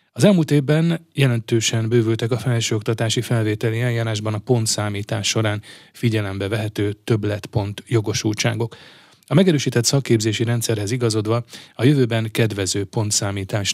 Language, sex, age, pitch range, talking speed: Hungarian, male, 30-49, 105-120 Hz, 110 wpm